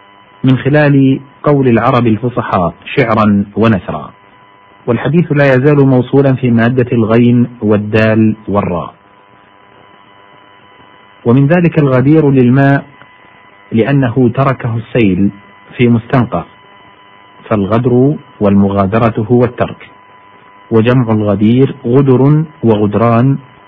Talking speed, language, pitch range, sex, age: 85 wpm, Arabic, 100-125 Hz, male, 50-69